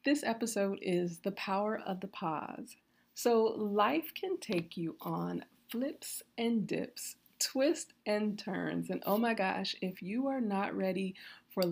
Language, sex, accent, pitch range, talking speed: English, female, American, 170-240 Hz, 155 wpm